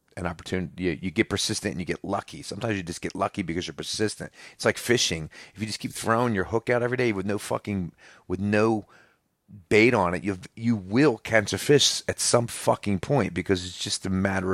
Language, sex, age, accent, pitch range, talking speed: English, male, 30-49, American, 85-100 Hz, 225 wpm